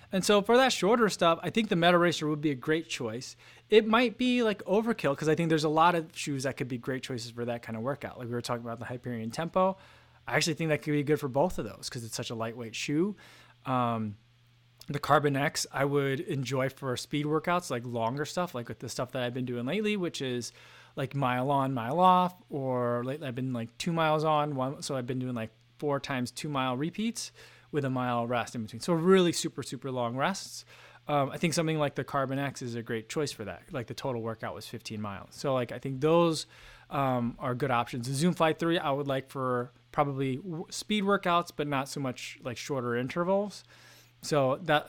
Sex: male